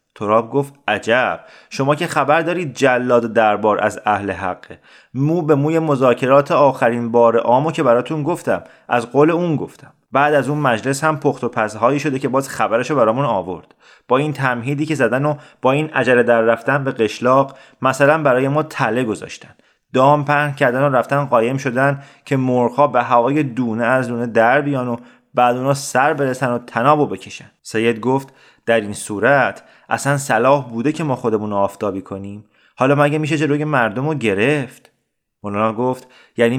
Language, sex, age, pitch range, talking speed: Persian, male, 30-49, 115-140 Hz, 170 wpm